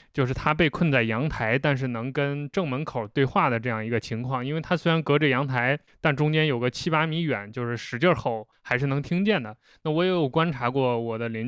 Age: 20-39